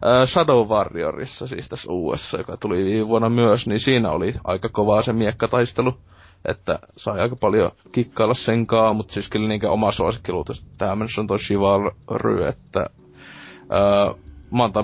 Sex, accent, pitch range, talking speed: male, native, 100-115 Hz, 145 wpm